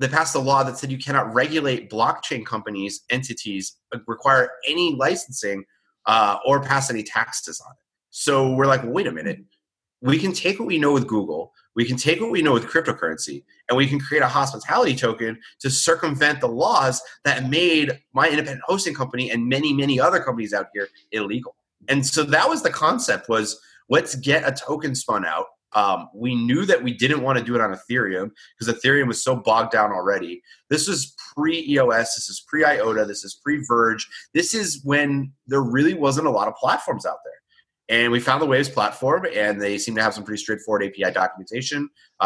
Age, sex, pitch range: 30-49, male, 115-150 Hz